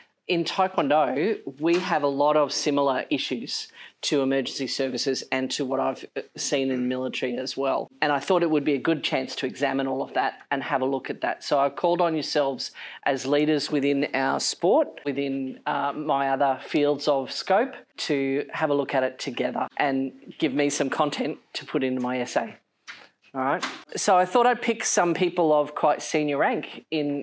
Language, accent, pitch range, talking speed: English, Australian, 140-175 Hz, 195 wpm